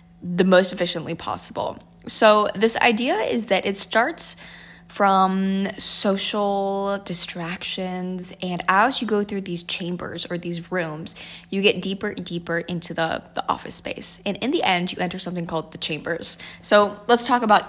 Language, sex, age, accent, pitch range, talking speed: English, female, 10-29, American, 170-200 Hz, 165 wpm